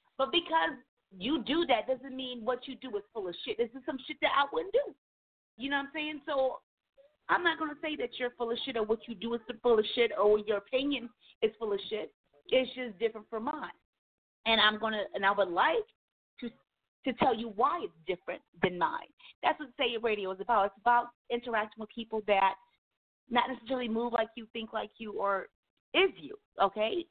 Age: 40-59